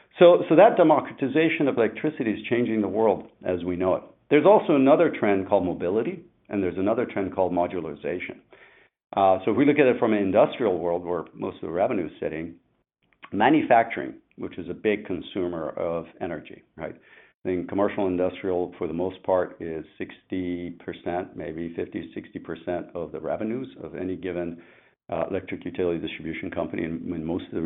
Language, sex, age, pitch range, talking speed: English, male, 50-69, 90-105 Hz, 180 wpm